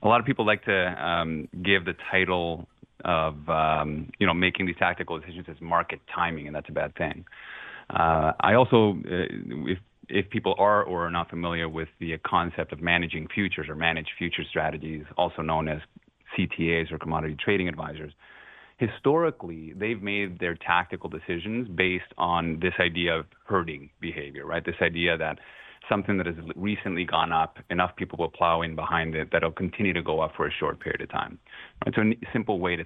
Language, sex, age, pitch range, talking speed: English, male, 30-49, 80-95 Hz, 190 wpm